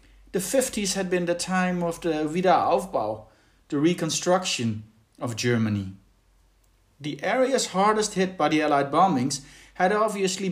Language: English